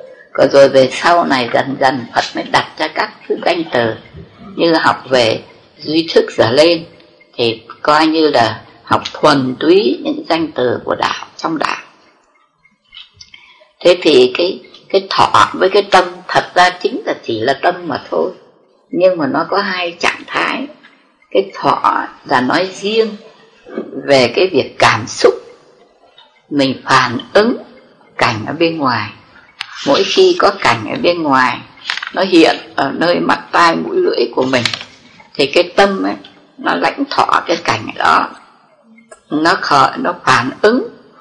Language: Vietnamese